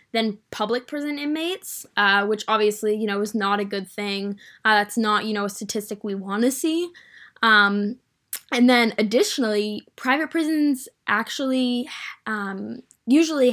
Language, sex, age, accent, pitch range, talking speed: English, female, 10-29, American, 205-250 Hz, 150 wpm